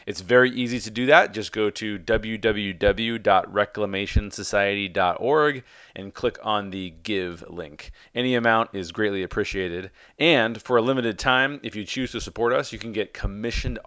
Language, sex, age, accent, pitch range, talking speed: English, male, 30-49, American, 95-115 Hz, 155 wpm